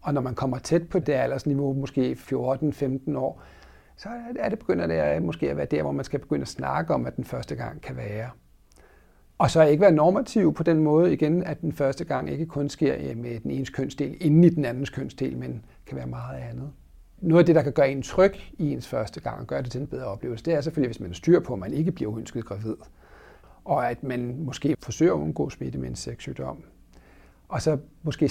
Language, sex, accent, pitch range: Danish, male, native, 115-160 Hz